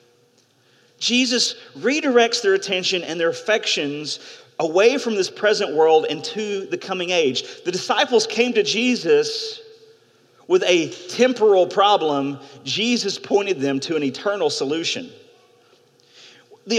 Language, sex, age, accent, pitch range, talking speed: English, male, 40-59, American, 175-260 Hz, 120 wpm